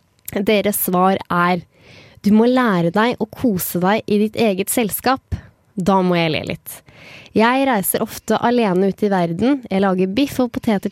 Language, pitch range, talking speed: English, 185-230 Hz, 170 wpm